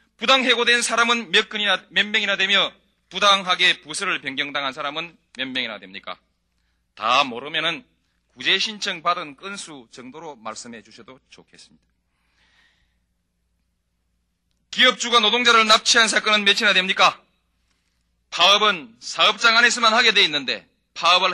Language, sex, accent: Korean, male, native